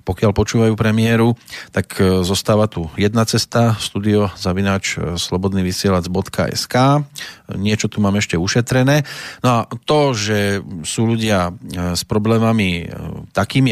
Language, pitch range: Slovak, 95-115 Hz